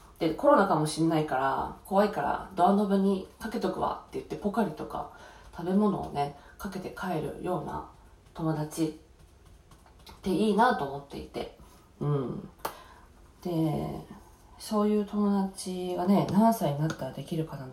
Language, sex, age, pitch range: Japanese, female, 20-39, 150-210 Hz